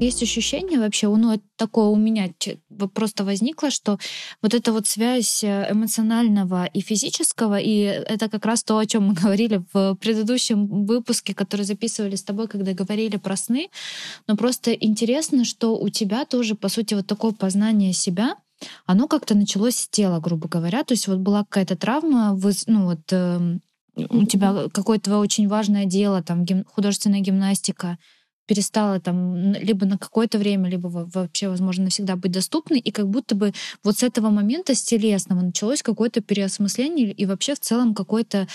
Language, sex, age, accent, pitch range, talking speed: Russian, female, 20-39, native, 195-225 Hz, 160 wpm